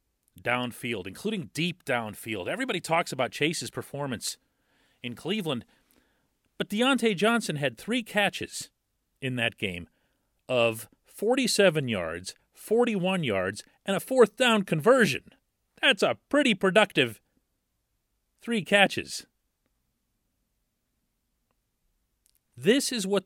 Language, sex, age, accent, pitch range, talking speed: English, male, 40-59, American, 120-170 Hz, 100 wpm